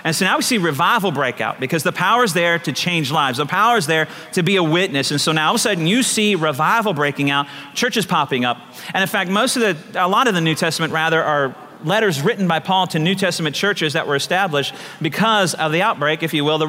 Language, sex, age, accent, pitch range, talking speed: English, male, 40-59, American, 165-220 Hz, 260 wpm